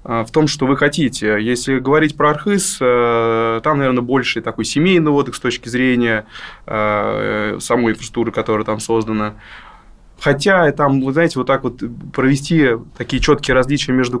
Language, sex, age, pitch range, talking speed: Russian, male, 20-39, 115-145 Hz, 150 wpm